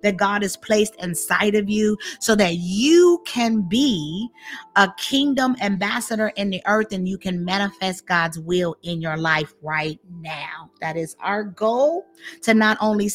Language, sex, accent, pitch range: English, female, American, 185-225 Hz